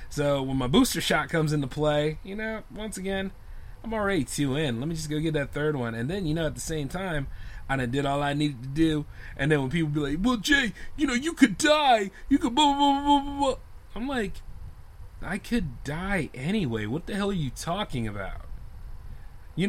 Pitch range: 115-180 Hz